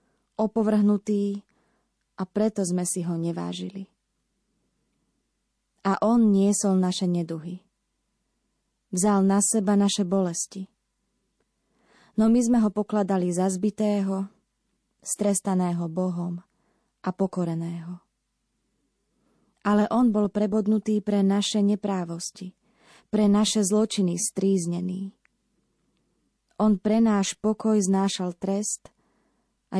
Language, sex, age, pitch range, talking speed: Slovak, female, 20-39, 185-210 Hz, 95 wpm